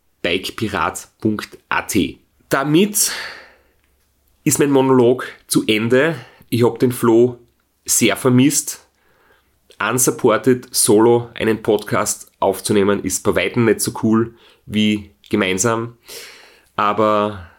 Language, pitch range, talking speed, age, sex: German, 100-125 Hz, 90 wpm, 30-49, male